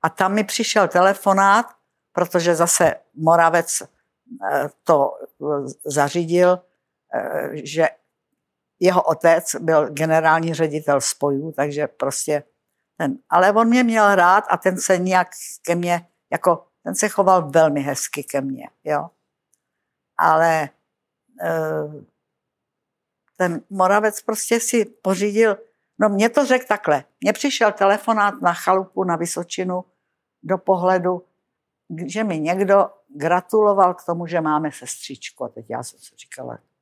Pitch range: 160-195 Hz